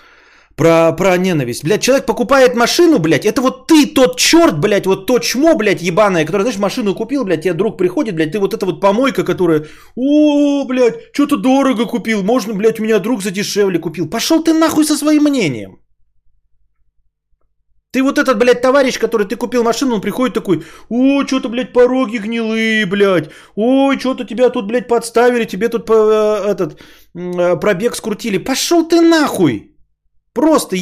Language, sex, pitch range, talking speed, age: Bulgarian, male, 190-280 Hz, 170 wpm, 30-49